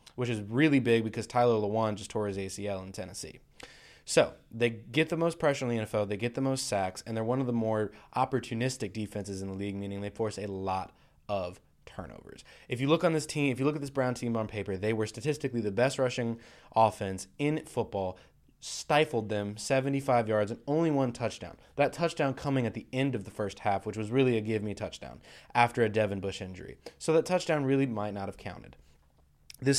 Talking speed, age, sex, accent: 220 wpm, 20-39, male, American